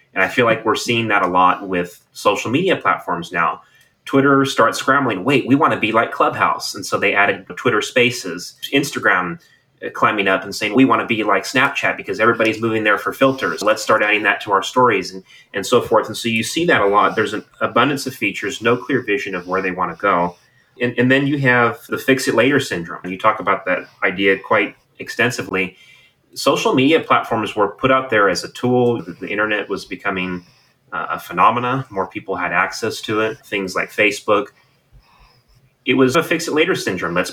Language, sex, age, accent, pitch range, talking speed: English, male, 30-49, American, 100-125 Hz, 210 wpm